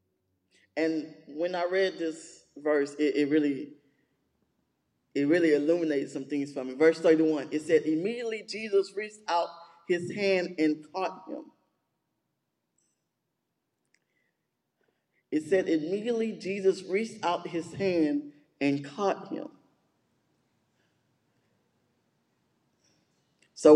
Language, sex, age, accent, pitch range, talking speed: English, male, 20-39, American, 155-215 Hz, 105 wpm